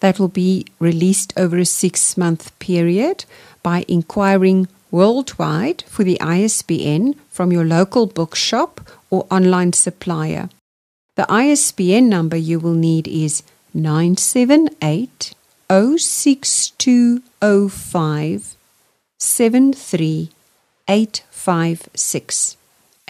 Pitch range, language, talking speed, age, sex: 165-215 Hz, English, 75 wpm, 40-59, female